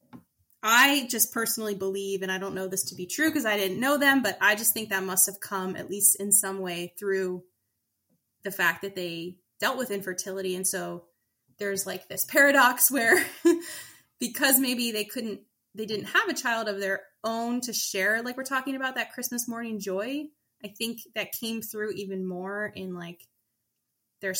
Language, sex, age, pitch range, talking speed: English, female, 20-39, 185-220 Hz, 190 wpm